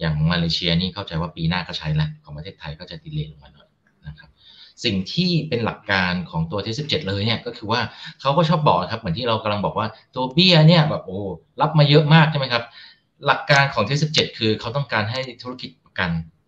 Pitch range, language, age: 95-150 Hz, Thai, 30-49